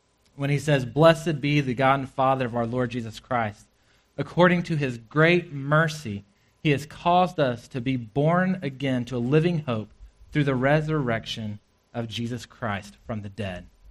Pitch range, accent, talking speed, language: 115-155 Hz, American, 175 wpm, English